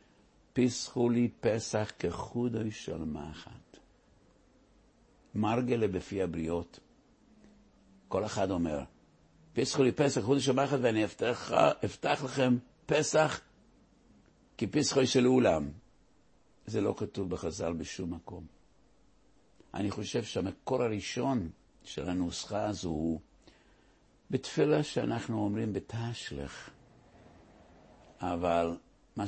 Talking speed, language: 80 wpm, English